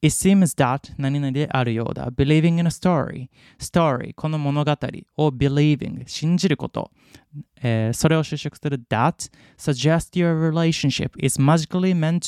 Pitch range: 135-175 Hz